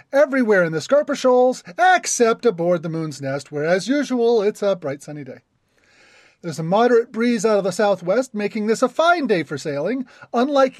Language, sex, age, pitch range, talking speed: English, male, 40-59, 160-240 Hz, 190 wpm